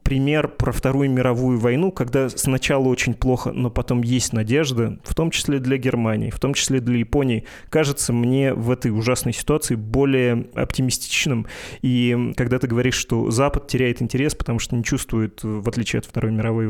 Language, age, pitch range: Russian, 20-39, 115-130 Hz